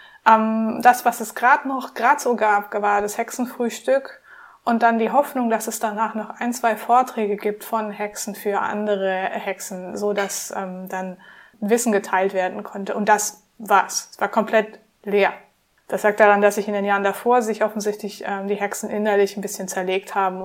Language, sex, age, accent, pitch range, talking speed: German, female, 20-39, German, 200-235 Hz, 180 wpm